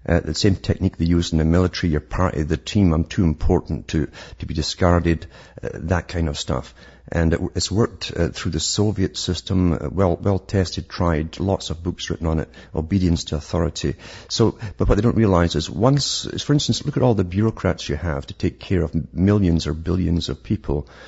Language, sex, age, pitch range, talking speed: English, male, 50-69, 80-105 Hz, 210 wpm